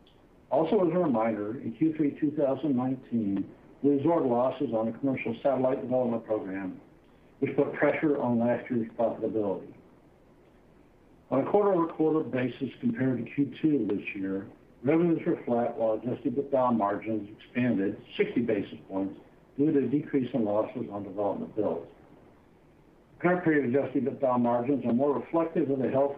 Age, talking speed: 60-79, 145 wpm